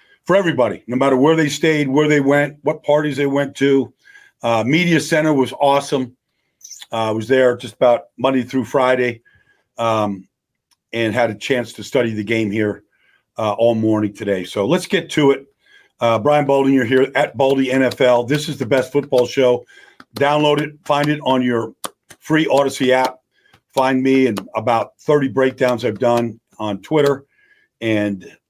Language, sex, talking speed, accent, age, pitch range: English, male, 170 wpm, American, 50-69, 120-150 Hz